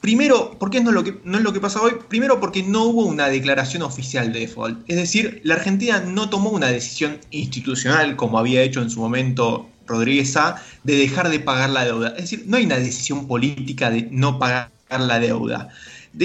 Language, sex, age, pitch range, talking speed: Spanish, male, 20-39, 130-190 Hz, 200 wpm